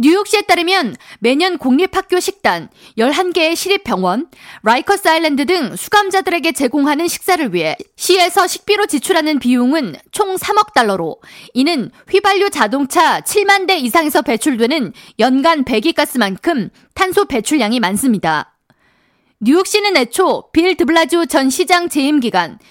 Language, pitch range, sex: Korean, 255-365 Hz, female